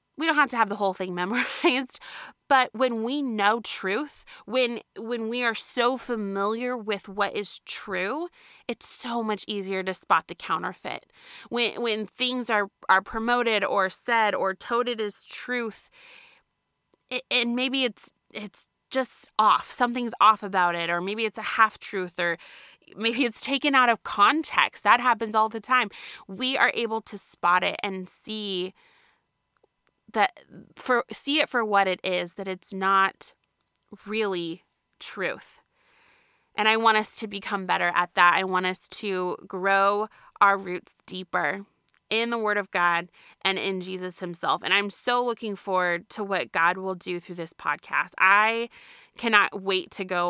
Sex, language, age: female, English, 20-39